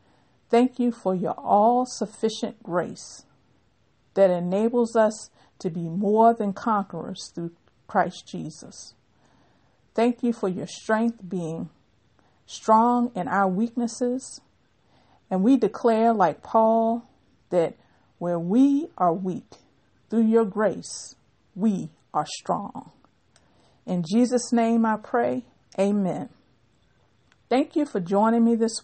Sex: female